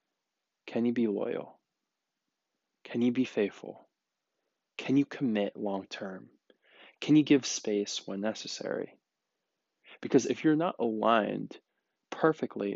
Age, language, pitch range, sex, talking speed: 20-39, English, 105-125 Hz, male, 115 wpm